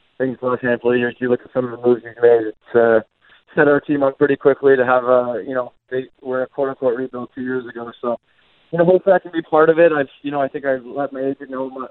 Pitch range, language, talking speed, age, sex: 125-140 Hz, English, 280 wpm, 20-39, male